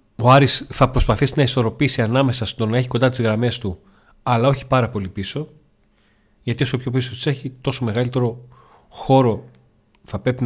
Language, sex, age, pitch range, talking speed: Greek, male, 40-59, 100-120 Hz, 170 wpm